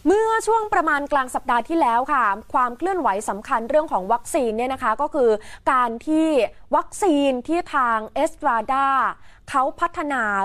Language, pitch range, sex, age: Thai, 225-315 Hz, female, 20-39